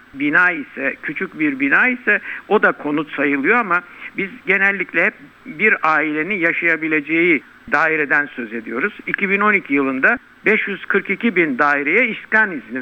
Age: 60-79